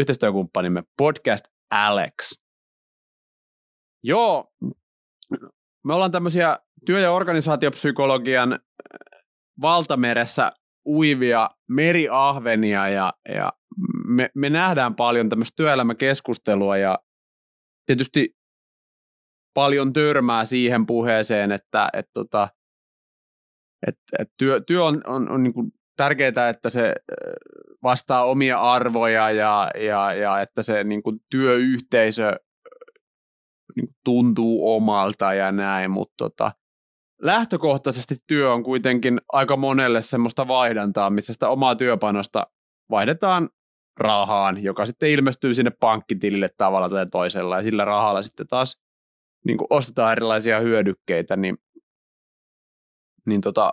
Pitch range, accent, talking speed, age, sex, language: 105-140 Hz, native, 105 wpm, 30-49, male, Finnish